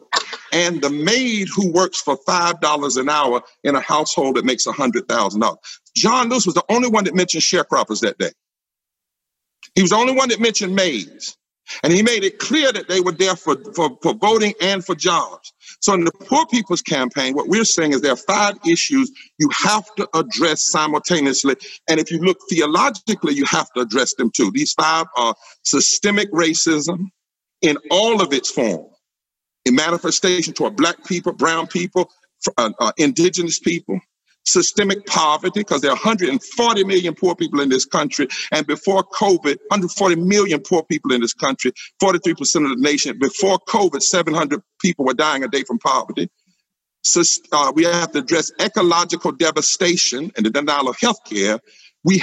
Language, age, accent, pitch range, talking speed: English, 50-69, American, 160-205 Hz, 175 wpm